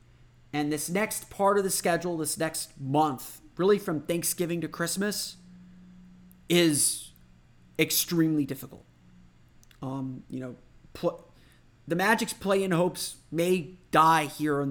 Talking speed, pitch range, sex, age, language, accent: 125 wpm, 125-170 Hz, male, 30-49, English, American